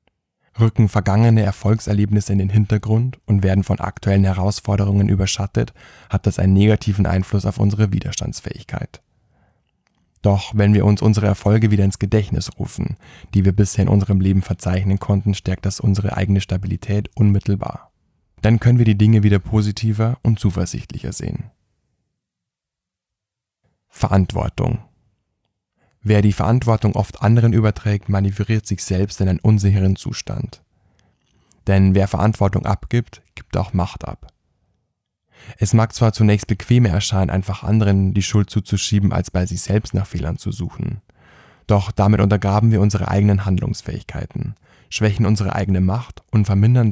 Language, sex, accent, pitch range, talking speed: German, male, German, 95-110 Hz, 140 wpm